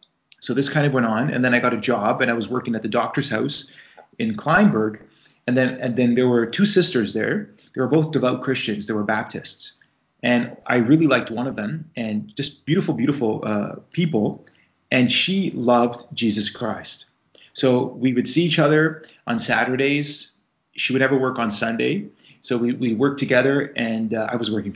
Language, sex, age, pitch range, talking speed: English, male, 30-49, 115-140 Hz, 195 wpm